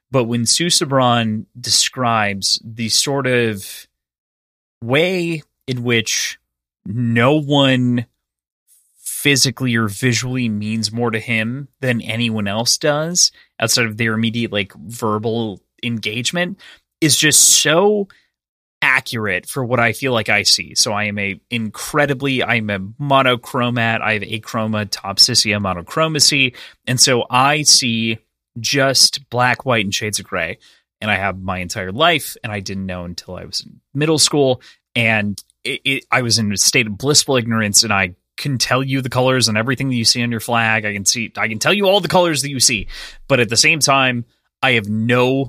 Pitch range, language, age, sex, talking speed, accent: 105-130 Hz, English, 30-49, male, 170 wpm, American